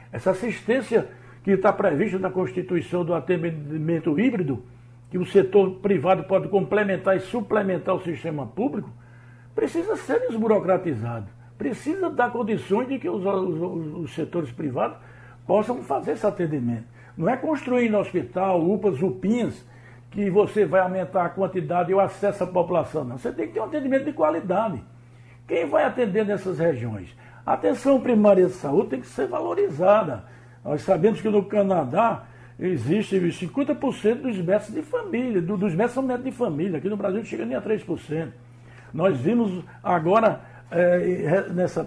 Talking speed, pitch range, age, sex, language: 155 wpm, 150-205 Hz, 60-79, male, Portuguese